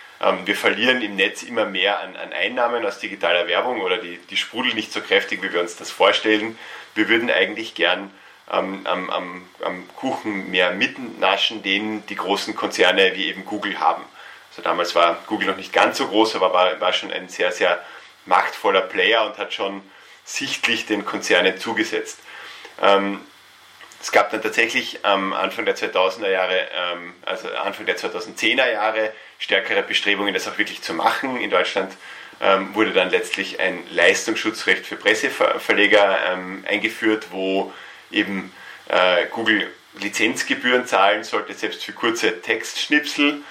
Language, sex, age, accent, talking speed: German, male, 30-49, German, 155 wpm